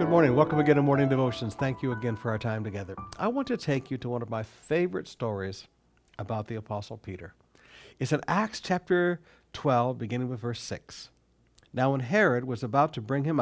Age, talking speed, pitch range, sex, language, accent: 60-79, 205 wpm, 110-150 Hz, male, English, American